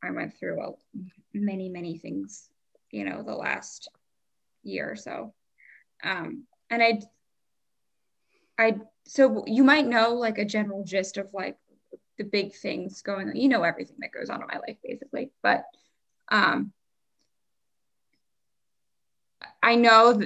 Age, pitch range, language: 20-39, 200-235 Hz, English